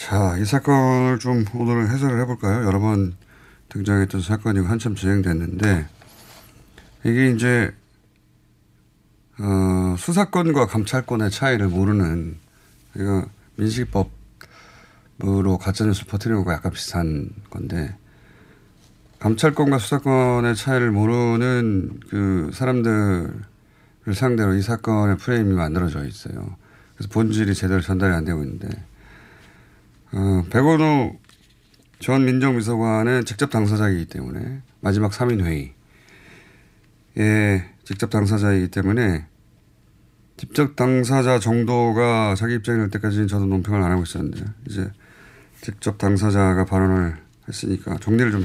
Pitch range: 95-125 Hz